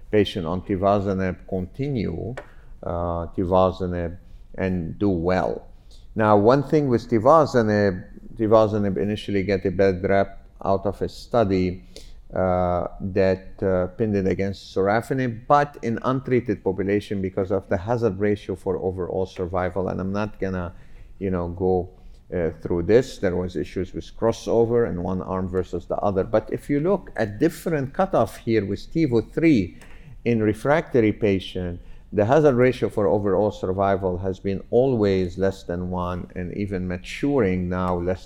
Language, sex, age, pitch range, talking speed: English, male, 50-69, 95-110 Hz, 145 wpm